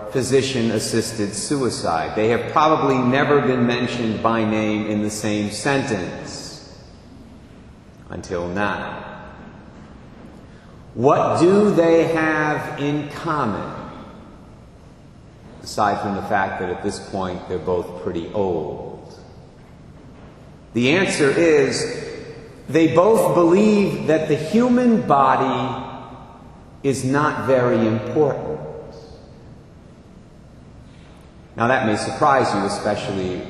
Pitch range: 105-155 Hz